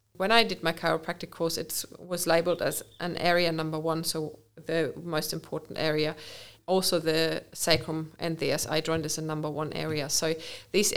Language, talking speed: English, 180 wpm